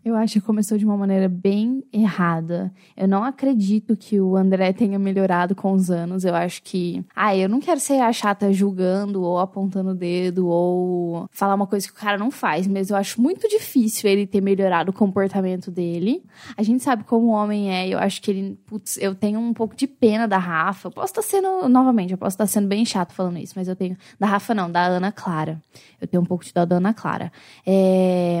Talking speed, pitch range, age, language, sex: 225 wpm, 190-235 Hz, 10-29, Portuguese, female